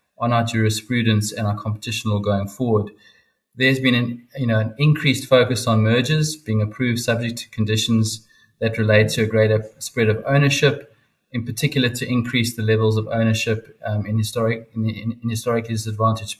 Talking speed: 160 wpm